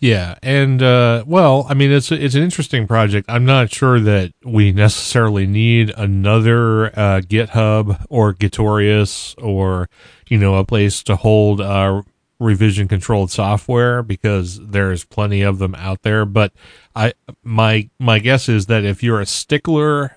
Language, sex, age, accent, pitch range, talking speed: English, male, 30-49, American, 100-115 Hz, 160 wpm